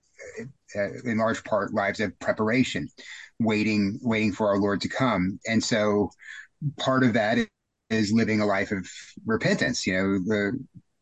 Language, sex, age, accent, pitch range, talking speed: English, male, 30-49, American, 105-125 Hz, 150 wpm